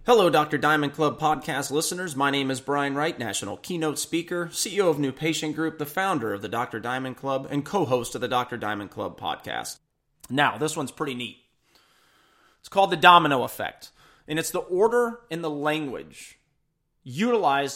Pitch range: 130-165 Hz